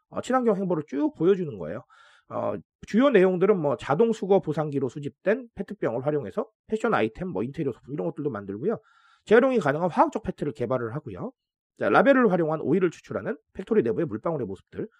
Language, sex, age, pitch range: Korean, male, 30-49, 150-225 Hz